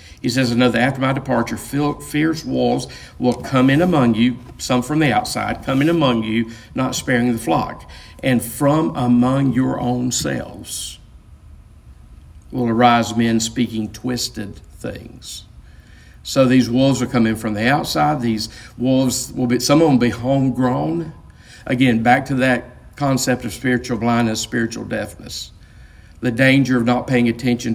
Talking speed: 155 wpm